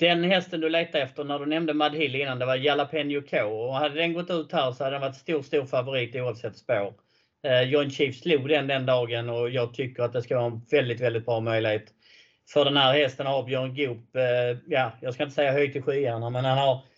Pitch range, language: 125-150 Hz, Swedish